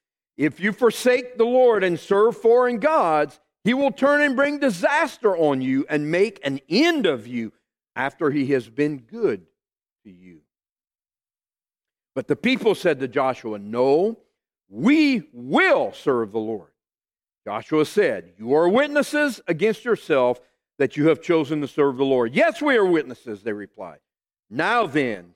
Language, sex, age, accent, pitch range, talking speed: English, male, 50-69, American, 130-215 Hz, 155 wpm